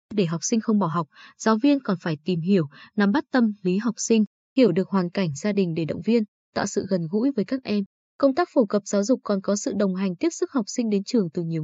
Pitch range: 190-250 Hz